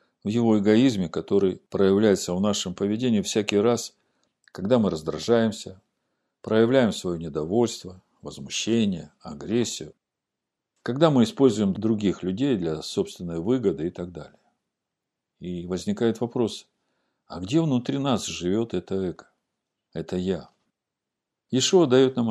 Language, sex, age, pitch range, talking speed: Russian, male, 50-69, 95-125 Hz, 120 wpm